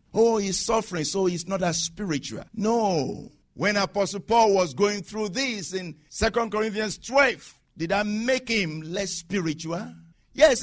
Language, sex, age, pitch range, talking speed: English, male, 50-69, 155-220 Hz, 150 wpm